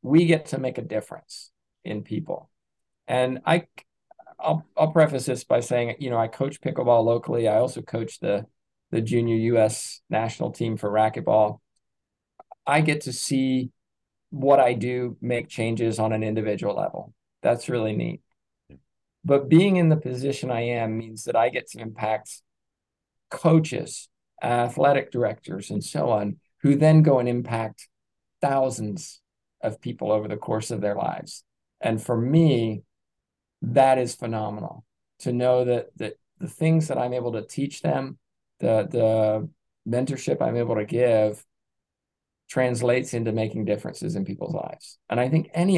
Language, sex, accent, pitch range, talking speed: English, male, American, 110-140 Hz, 155 wpm